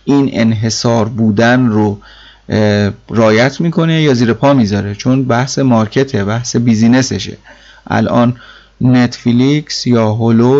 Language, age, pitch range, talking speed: Persian, 30-49, 110-140 Hz, 110 wpm